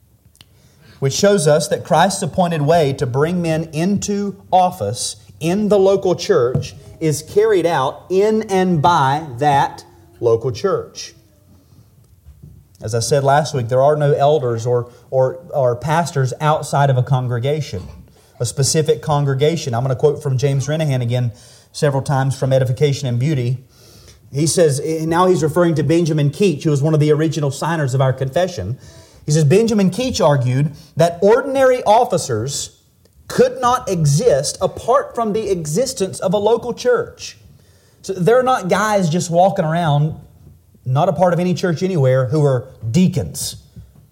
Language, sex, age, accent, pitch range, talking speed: English, male, 30-49, American, 125-180 Hz, 150 wpm